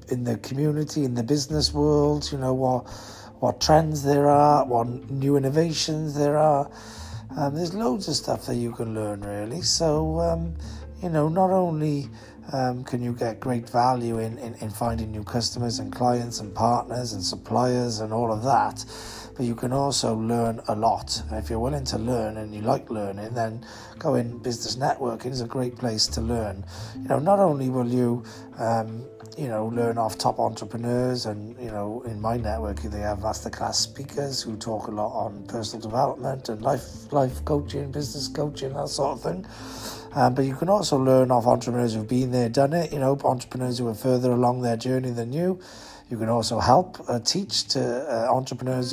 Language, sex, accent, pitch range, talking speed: English, male, British, 115-140 Hz, 195 wpm